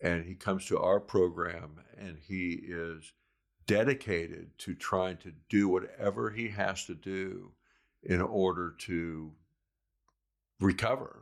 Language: English